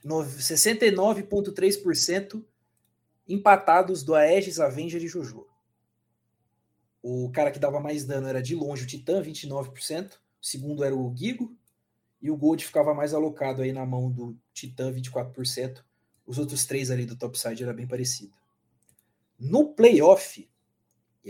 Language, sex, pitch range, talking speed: Portuguese, male, 125-175 Hz, 135 wpm